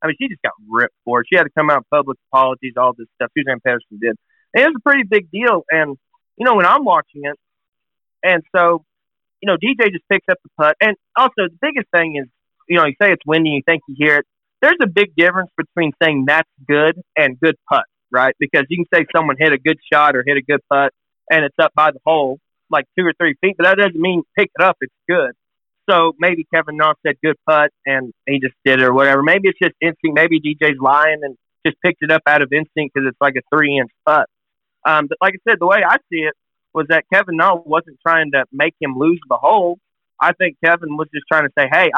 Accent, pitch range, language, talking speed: American, 145-180 Hz, English, 250 wpm